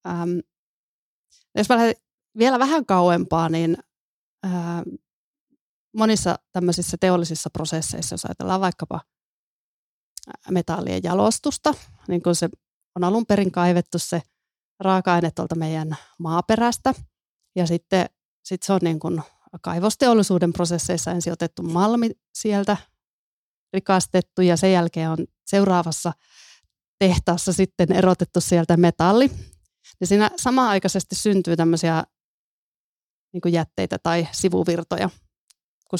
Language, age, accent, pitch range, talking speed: Finnish, 30-49, native, 170-215 Hz, 105 wpm